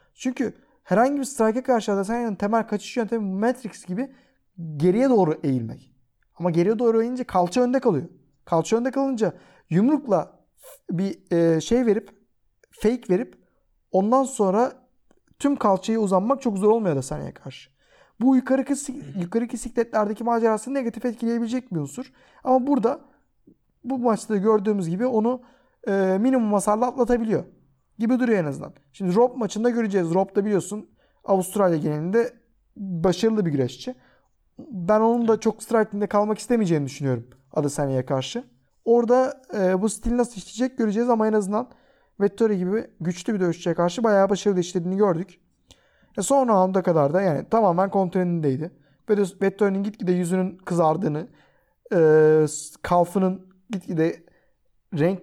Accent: native